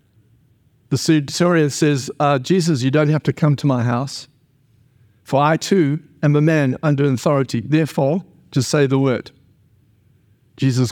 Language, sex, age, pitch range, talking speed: English, male, 60-79, 125-165 Hz, 150 wpm